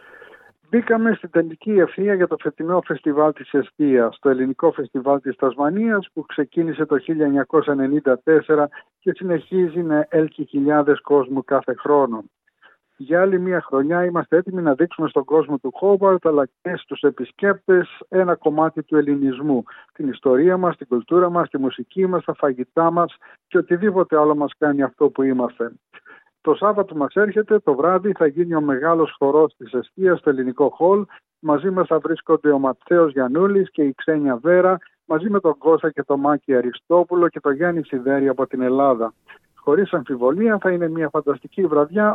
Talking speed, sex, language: 165 wpm, male, Greek